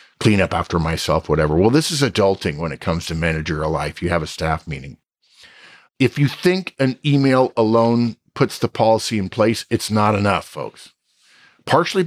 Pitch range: 110-150 Hz